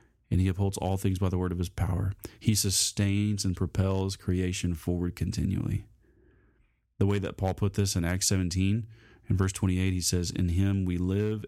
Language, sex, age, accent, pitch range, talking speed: English, male, 30-49, American, 90-105 Hz, 190 wpm